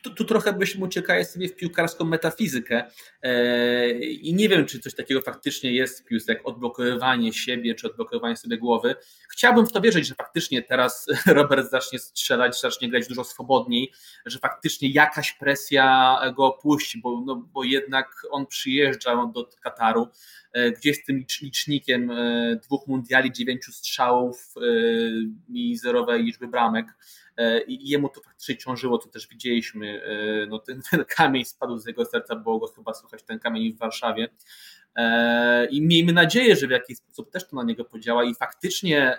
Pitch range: 120-165 Hz